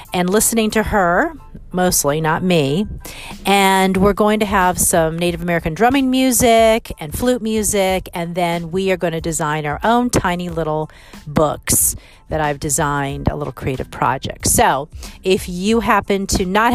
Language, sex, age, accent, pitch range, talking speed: English, female, 40-59, American, 160-205 Hz, 160 wpm